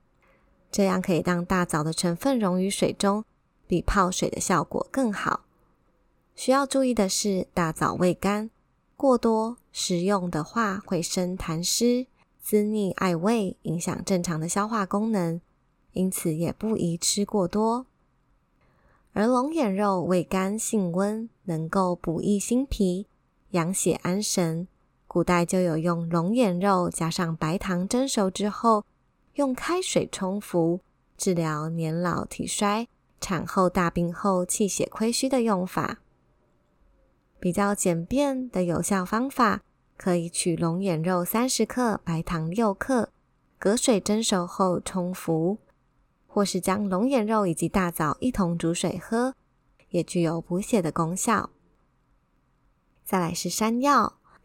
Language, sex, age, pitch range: Chinese, female, 20-39, 175-220 Hz